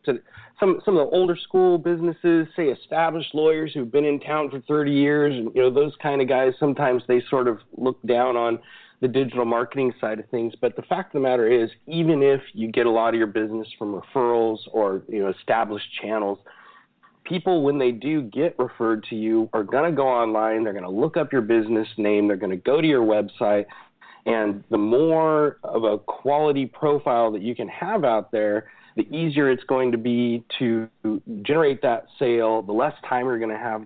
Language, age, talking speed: English, 40-59, 210 wpm